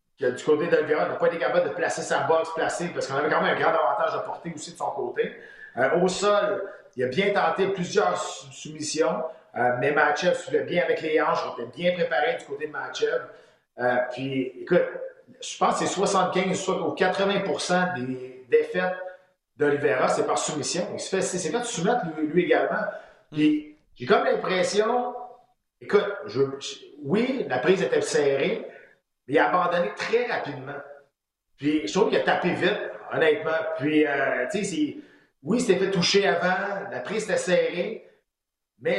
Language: French